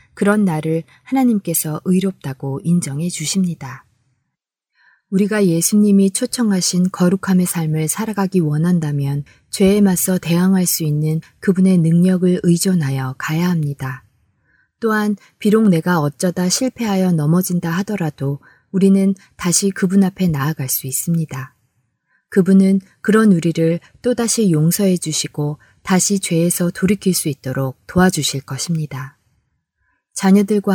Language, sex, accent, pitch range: Korean, female, native, 150-195 Hz